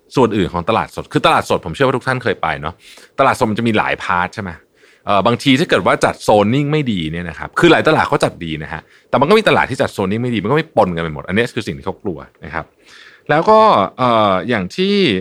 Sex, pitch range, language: male, 85-140 Hz, Thai